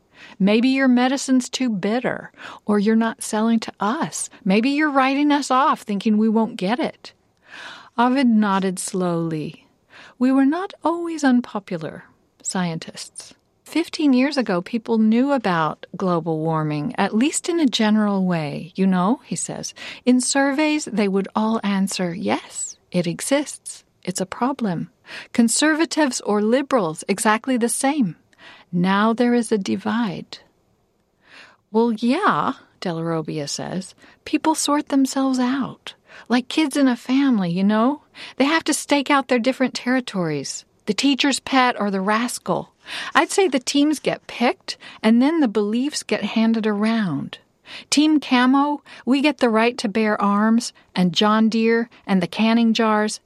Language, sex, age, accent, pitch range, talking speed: English, female, 50-69, American, 200-270 Hz, 145 wpm